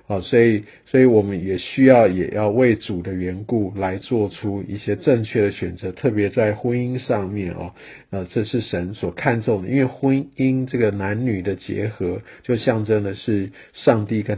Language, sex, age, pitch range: Chinese, male, 50-69, 100-120 Hz